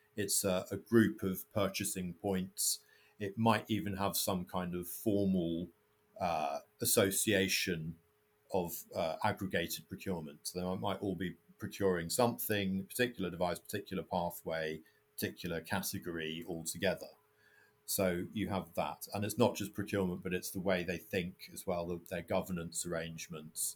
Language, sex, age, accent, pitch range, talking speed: English, male, 50-69, British, 90-110 Hz, 135 wpm